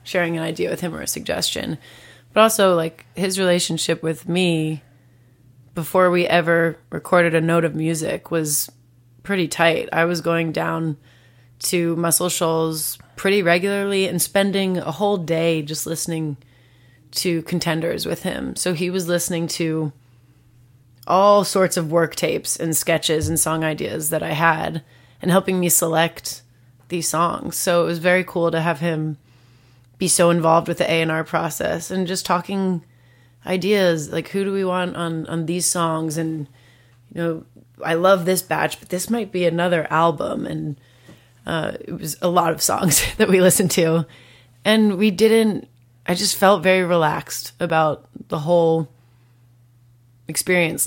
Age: 30-49